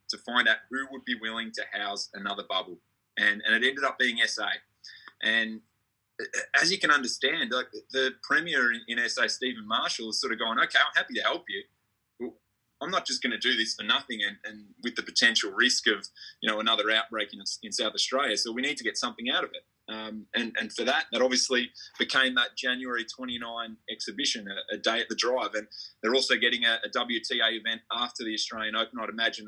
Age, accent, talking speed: 20-39, Australian, 215 wpm